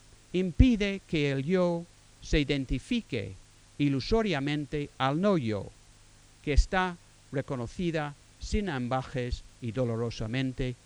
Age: 50-69